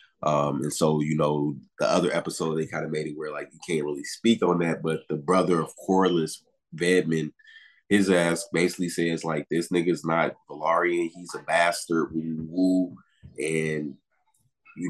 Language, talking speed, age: English, 170 wpm, 20-39